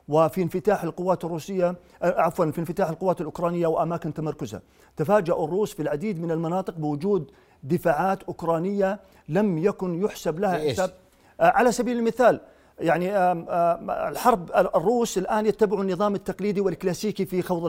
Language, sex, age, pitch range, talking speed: Arabic, male, 50-69, 185-245 Hz, 125 wpm